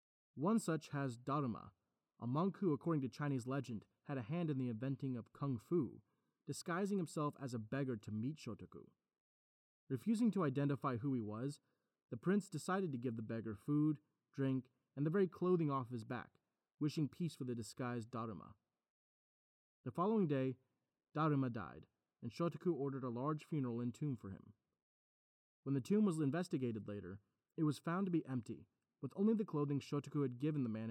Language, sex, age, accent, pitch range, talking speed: English, male, 30-49, American, 120-155 Hz, 180 wpm